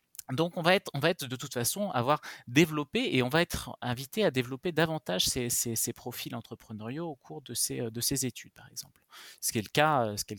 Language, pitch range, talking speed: French, 115-150 Hz, 245 wpm